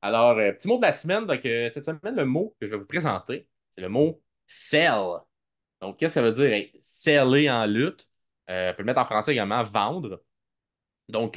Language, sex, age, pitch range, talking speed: French, male, 20-39, 115-145 Hz, 220 wpm